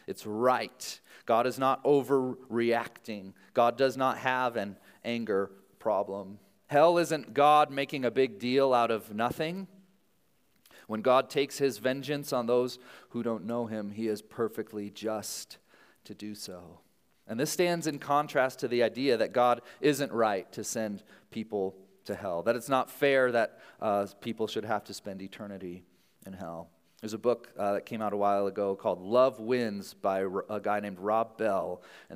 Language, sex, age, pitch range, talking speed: English, male, 30-49, 100-135 Hz, 175 wpm